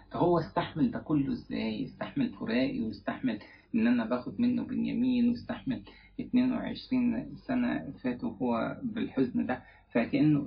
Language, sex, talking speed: English, male, 120 wpm